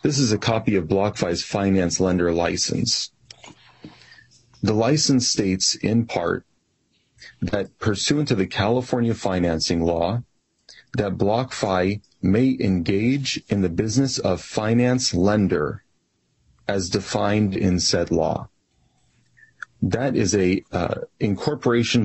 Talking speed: 110 wpm